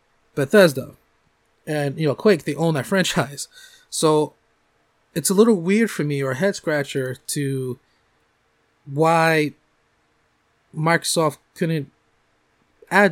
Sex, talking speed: male, 110 wpm